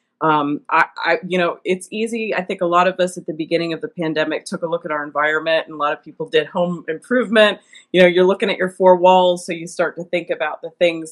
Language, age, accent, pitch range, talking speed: English, 30-49, American, 155-185 Hz, 265 wpm